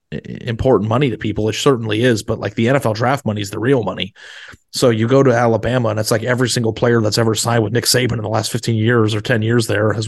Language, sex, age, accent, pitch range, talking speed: English, male, 30-49, American, 110-125 Hz, 260 wpm